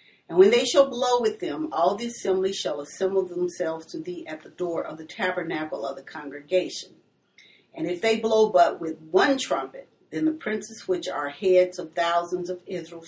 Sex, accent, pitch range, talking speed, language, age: female, American, 170-220 Hz, 195 wpm, English, 40-59